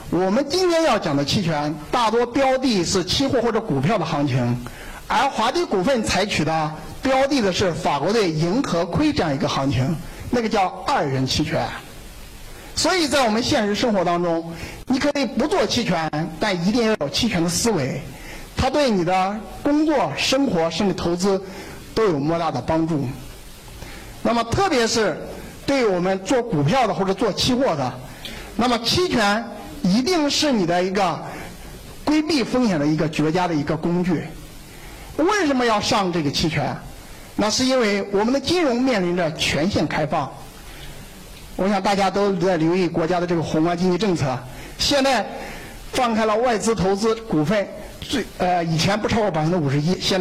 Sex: male